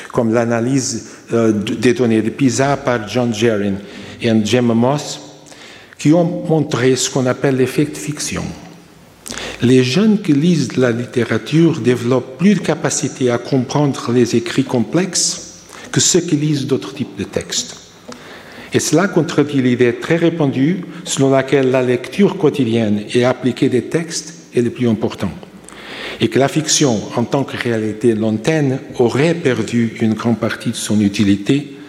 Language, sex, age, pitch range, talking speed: French, male, 60-79, 115-155 Hz, 150 wpm